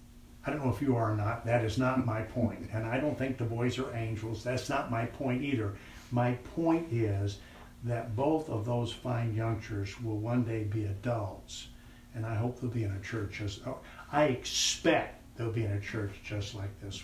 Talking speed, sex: 210 wpm, male